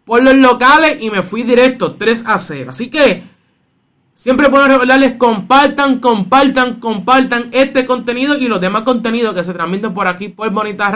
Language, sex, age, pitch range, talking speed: Spanish, male, 20-39, 215-250 Hz, 170 wpm